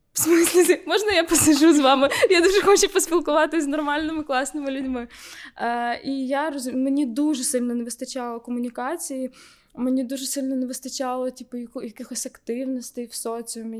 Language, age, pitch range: Ukrainian, 20-39, 240-285 Hz